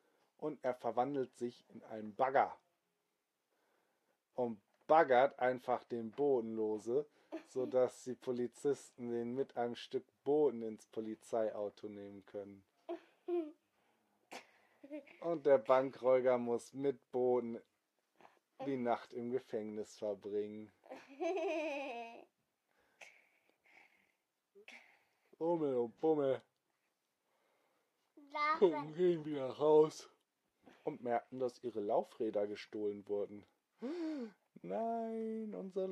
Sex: male